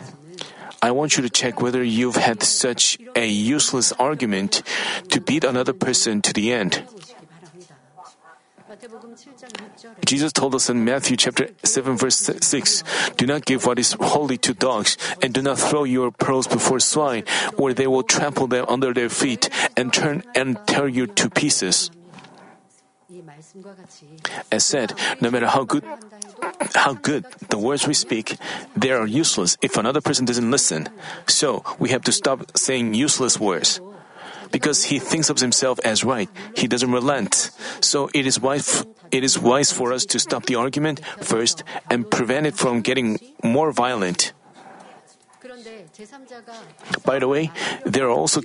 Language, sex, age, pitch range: Korean, male, 40-59, 125-180 Hz